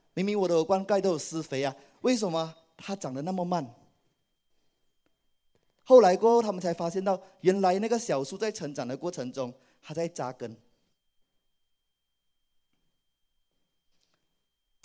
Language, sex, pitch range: Chinese, male, 155-250 Hz